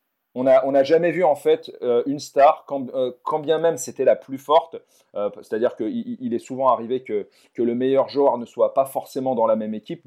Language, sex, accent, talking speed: French, male, French, 225 wpm